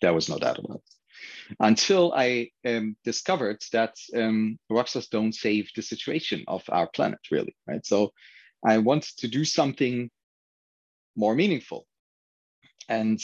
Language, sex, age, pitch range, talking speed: English, male, 30-49, 105-125 Hz, 140 wpm